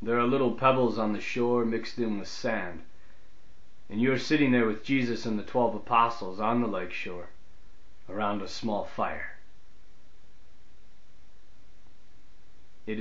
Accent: American